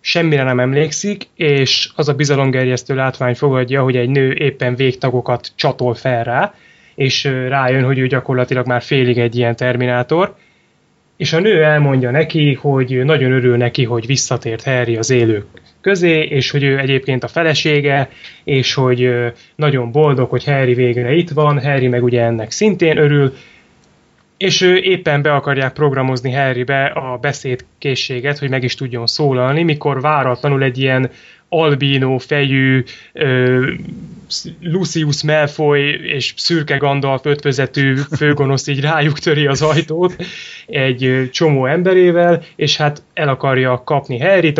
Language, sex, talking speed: Hungarian, male, 140 wpm